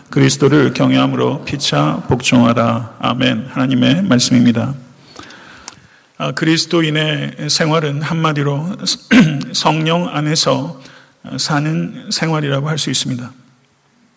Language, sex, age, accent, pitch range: Korean, male, 40-59, native, 130-160 Hz